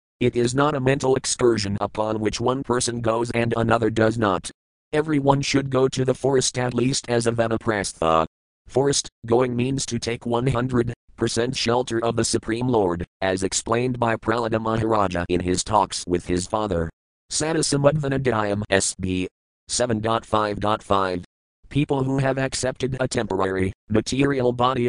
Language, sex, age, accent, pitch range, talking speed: English, male, 40-59, American, 105-125 Hz, 140 wpm